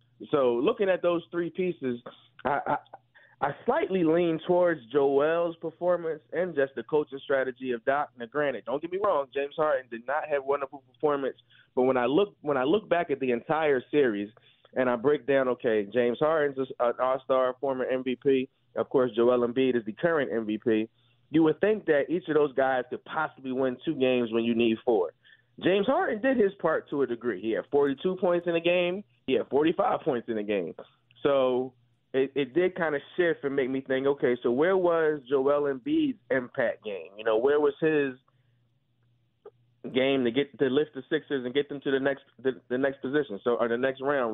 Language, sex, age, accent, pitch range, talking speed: English, male, 30-49, American, 125-155 Hz, 200 wpm